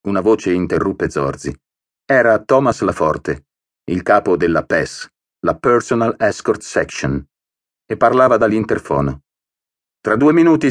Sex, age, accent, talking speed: male, 40-59, native, 120 wpm